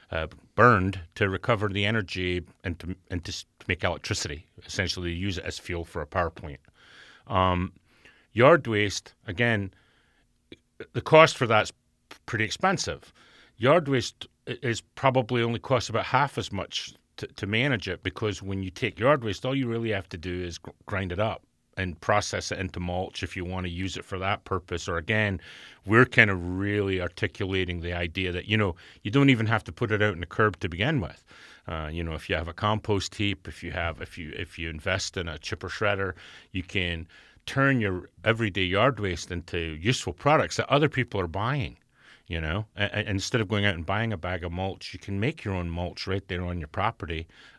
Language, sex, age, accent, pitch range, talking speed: English, male, 40-59, American, 90-110 Hz, 205 wpm